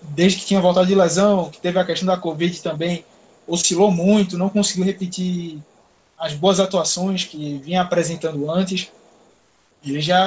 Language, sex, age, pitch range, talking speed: Portuguese, male, 20-39, 160-200 Hz, 160 wpm